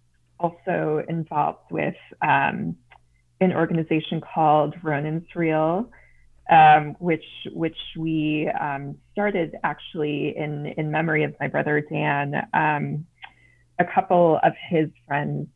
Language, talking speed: English, 110 wpm